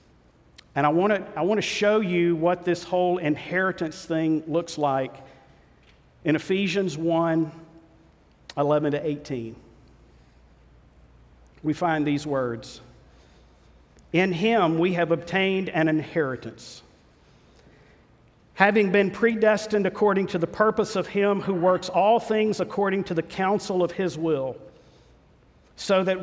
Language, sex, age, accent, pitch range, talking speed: English, male, 50-69, American, 150-195 Hz, 125 wpm